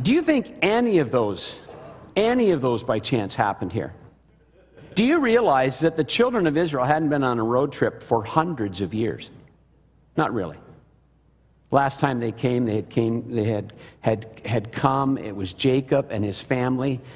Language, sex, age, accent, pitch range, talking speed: English, male, 50-69, American, 125-170 Hz, 180 wpm